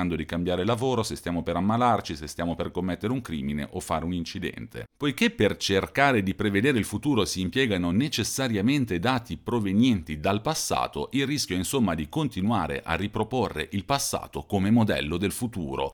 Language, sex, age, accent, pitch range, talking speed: Italian, male, 40-59, native, 85-120 Hz, 170 wpm